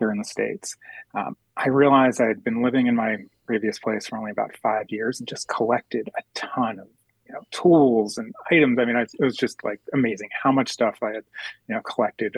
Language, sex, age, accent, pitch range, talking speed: English, male, 30-49, American, 110-145 Hz, 205 wpm